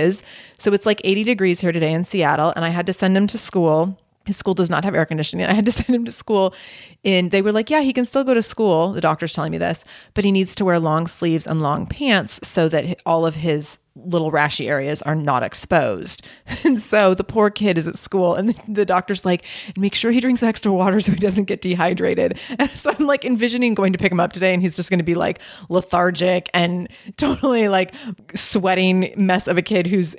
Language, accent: English, American